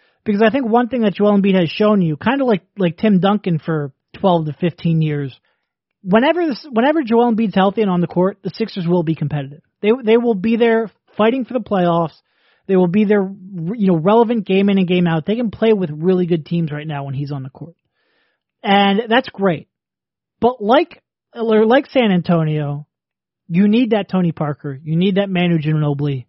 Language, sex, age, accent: English, male, 30-49, American